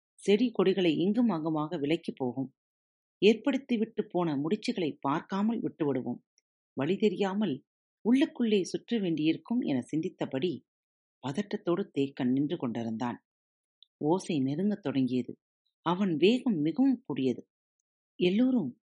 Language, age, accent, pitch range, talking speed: Tamil, 40-59, native, 145-215 Hz, 95 wpm